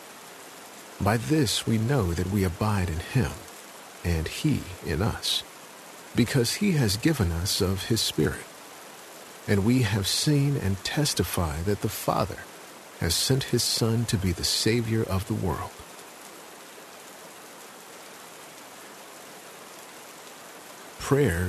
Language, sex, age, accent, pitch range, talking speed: English, male, 50-69, American, 95-125 Hz, 115 wpm